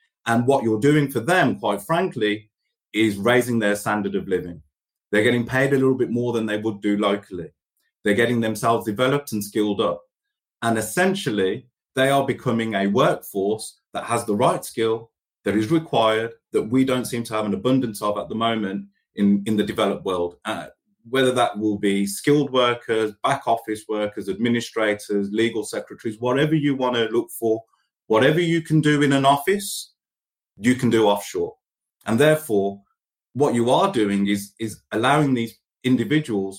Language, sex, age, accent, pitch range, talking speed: English, male, 30-49, British, 105-135 Hz, 175 wpm